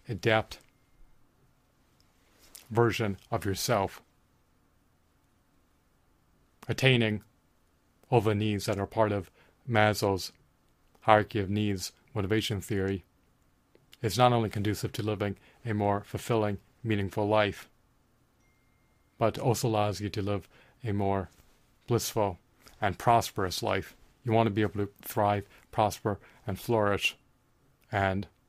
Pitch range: 95-115 Hz